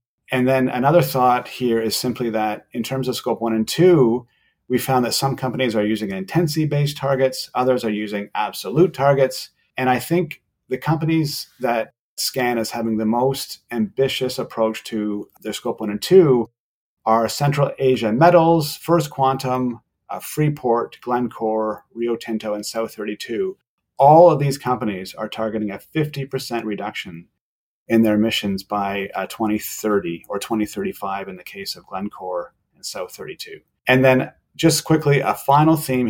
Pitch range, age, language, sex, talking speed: 110-140 Hz, 40-59, English, male, 150 wpm